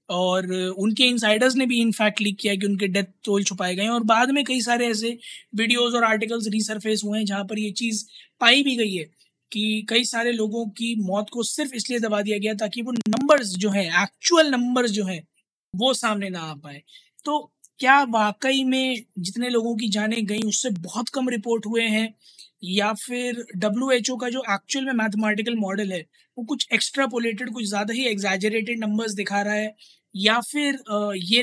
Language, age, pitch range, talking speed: Hindi, 20-39, 205-245 Hz, 190 wpm